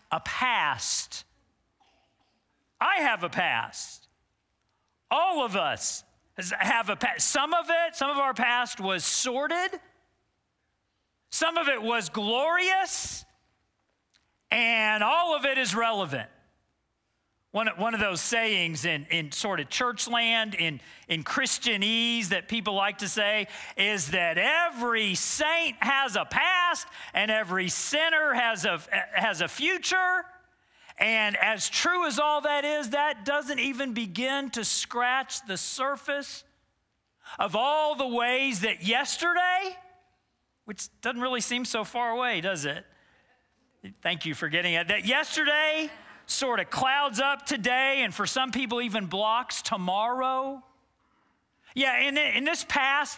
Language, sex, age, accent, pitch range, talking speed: English, male, 40-59, American, 210-290 Hz, 135 wpm